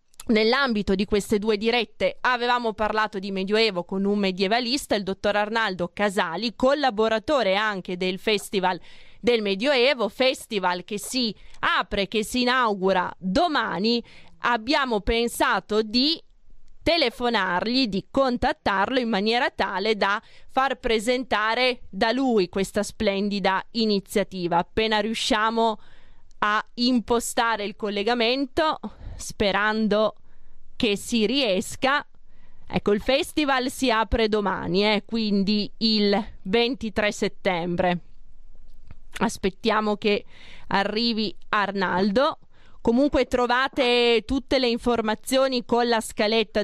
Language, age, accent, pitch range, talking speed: Italian, 20-39, native, 200-245 Hz, 105 wpm